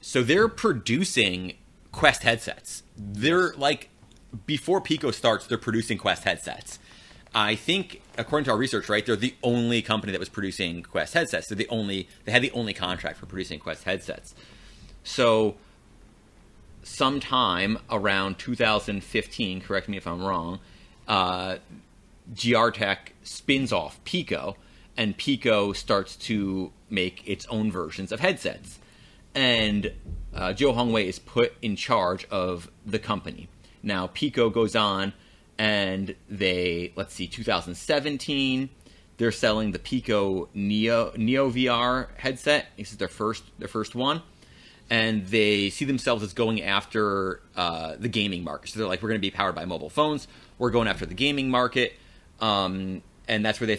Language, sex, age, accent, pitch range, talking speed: English, male, 30-49, American, 95-120 Hz, 145 wpm